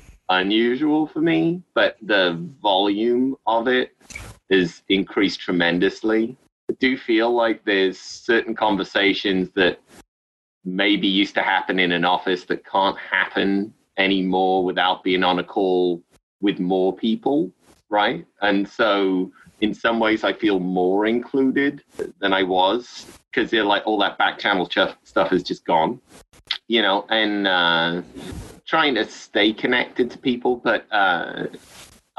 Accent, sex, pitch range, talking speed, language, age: British, male, 85-105 Hz, 140 wpm, English, 30-49